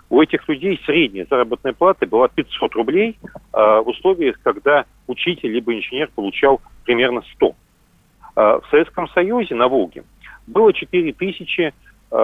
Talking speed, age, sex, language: 125 wpm, 40-59, male, Russian